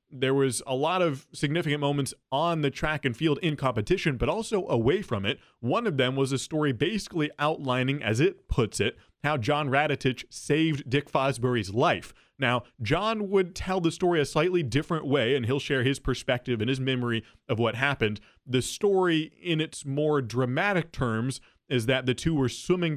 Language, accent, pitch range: English, American, 120-150 Hz